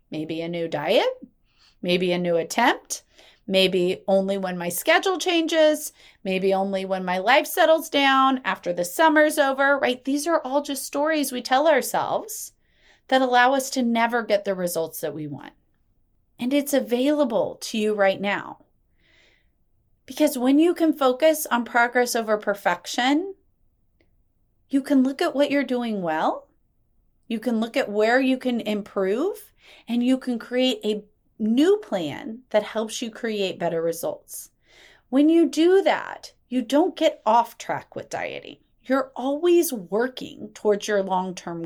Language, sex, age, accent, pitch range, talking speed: English, female, 30-49, American, 205-290 Hz, 155 wpm